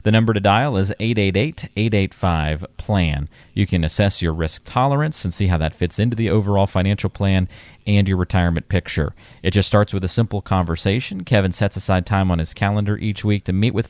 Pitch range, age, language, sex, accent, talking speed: 85-110 Hz, 40-59, English, male, American, 195 wpm